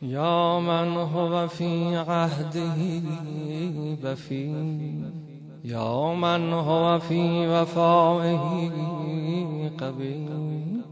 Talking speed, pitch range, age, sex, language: 65 wpm, 135-170 Hz, 20-39, male, Persian